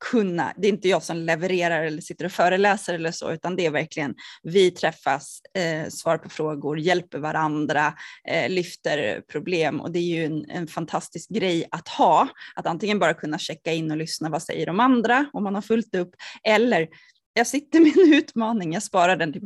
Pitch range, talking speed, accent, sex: 175-250 Hz, 195 wpm, native, female